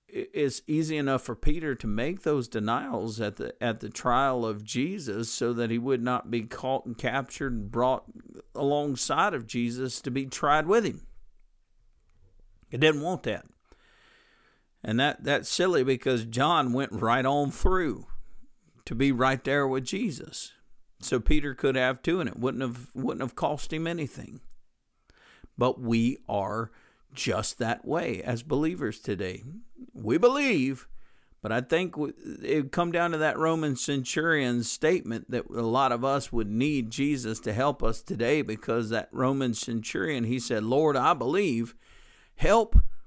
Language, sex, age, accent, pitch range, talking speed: English, male, 50-69, American, 115-145 Hz, 155 wpm